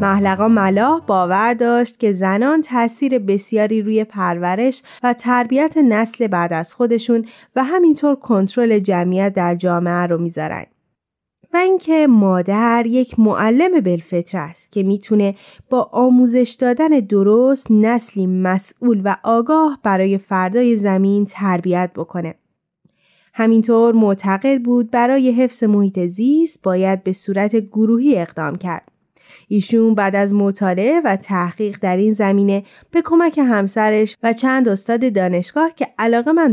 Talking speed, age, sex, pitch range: 130 wpm, 20-39, female, 190-250 Hz